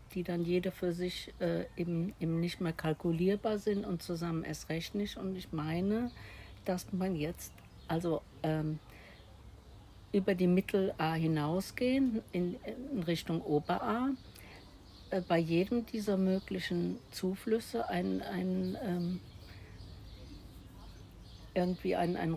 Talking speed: 120 wpm